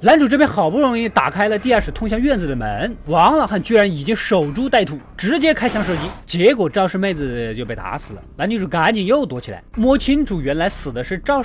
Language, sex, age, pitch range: Chinese, male, 20-39, 155-240 Hz